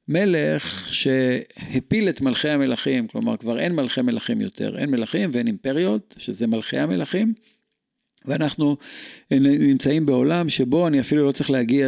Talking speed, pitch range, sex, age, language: 135 wpm, 130-200 Hz, male, 50-69, Hebrew